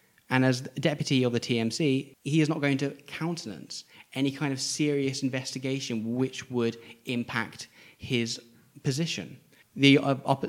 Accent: British